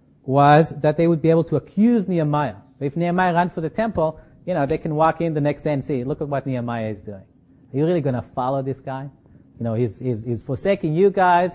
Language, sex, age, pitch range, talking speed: English, male, 30-49, 130-170 Hz, 250 wpm